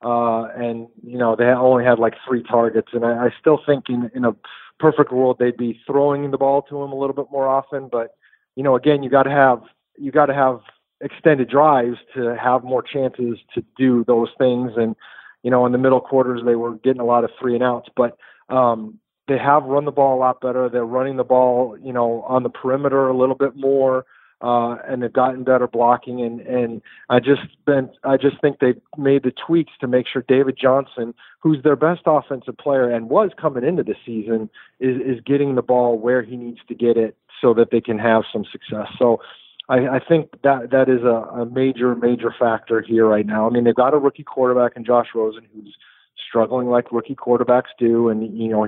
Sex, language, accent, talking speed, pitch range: male, English, American, 220 wpm, 120-135 Hz